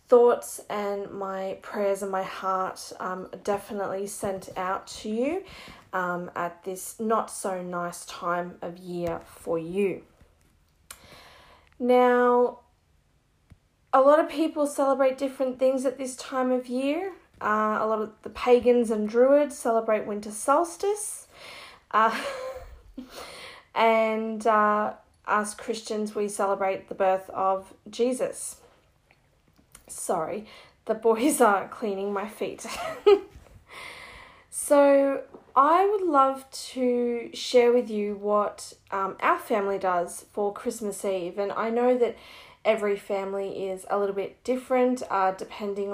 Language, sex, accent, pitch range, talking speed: English, female, Australian, 195-260 Hz, 125 wpm